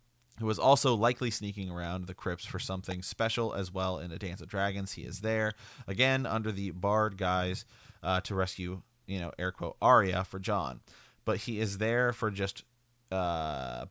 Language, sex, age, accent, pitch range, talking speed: English, male, 30-49, American, 95-115 Hz, 185 wpm